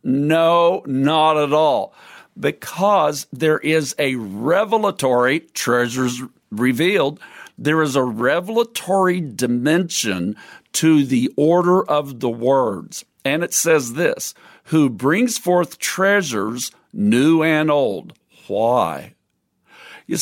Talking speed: 105 wpm